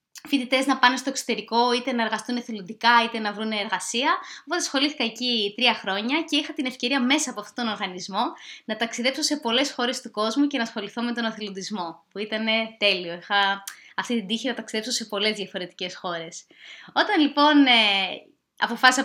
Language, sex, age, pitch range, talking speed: Greek, female, 20-39, 210-280 Hz, 185 wpm